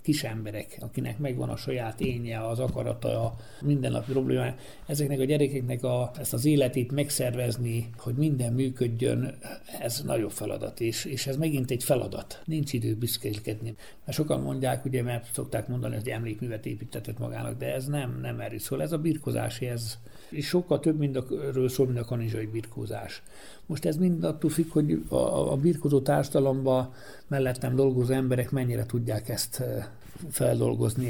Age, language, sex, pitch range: 60-79, Hungarian, male, 115-140 Hz